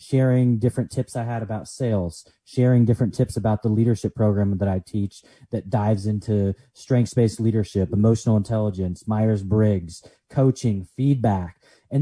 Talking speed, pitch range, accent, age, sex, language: 140 wpm, 110-130 Hz, American, 30-49, male, English